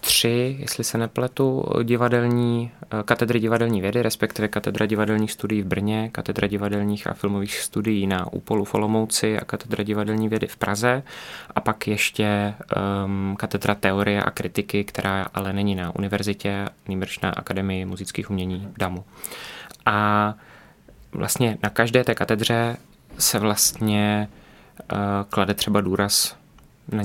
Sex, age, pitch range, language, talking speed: male, 20-39, 95-105 Hz, Czech, 140 wpm